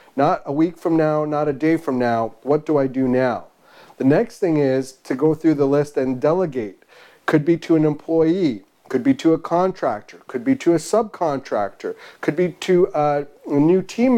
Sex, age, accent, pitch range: male, 40-59, American, 135-170 Hz